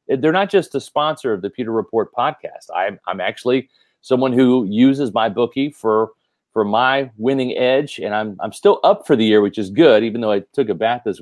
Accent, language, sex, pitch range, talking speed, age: American, English, male, 115-145 Hz, 220 wpm, 40-59